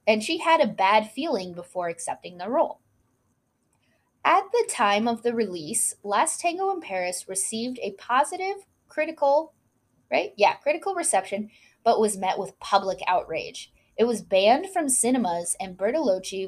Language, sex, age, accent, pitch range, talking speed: English, female, 10-29, American, 190-280 Hz, 150 wpm